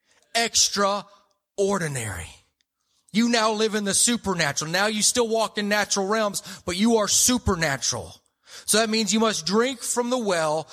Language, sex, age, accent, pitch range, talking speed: English, male, 30-49, American, 130-210 Hz, 150 wpm